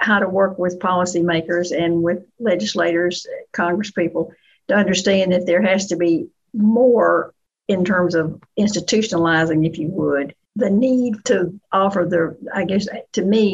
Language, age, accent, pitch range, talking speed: English, 60-79, American, 175-210 Hz, 145 wpm